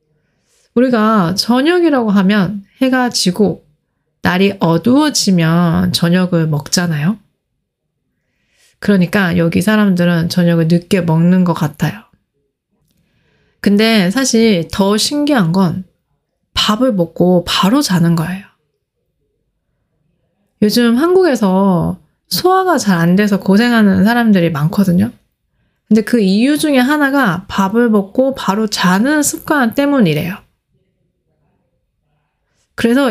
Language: Korean